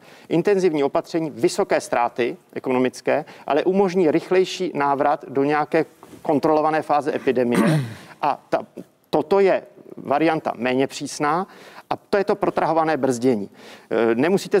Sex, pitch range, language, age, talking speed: male, 140-180 Hz, Czech, 50-69, 115 wpm